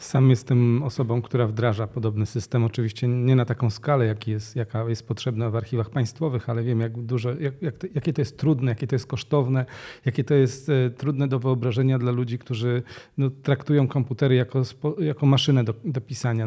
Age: 40-59